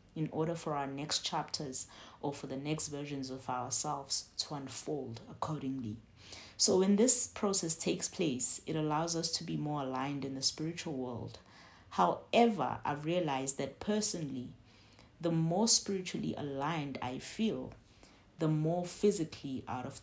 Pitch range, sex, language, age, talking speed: 130-160 Hz, female, English, 30-49, 145 wpm